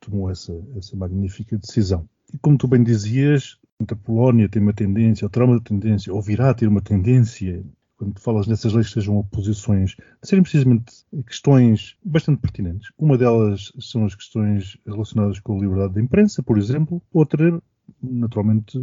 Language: Portuguese